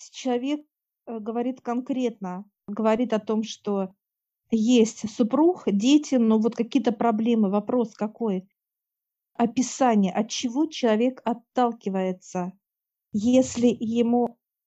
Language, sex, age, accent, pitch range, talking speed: Russian, female, 50-69, native, 210-245 Hz, 95 wpm